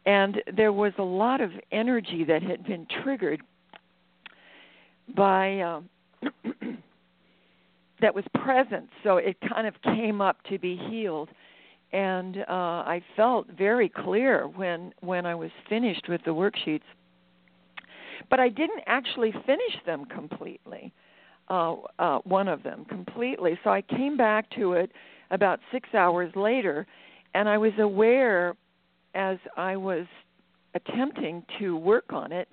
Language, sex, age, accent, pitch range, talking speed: English, female, 60-79, American, 170-215 Hz, 135 wpm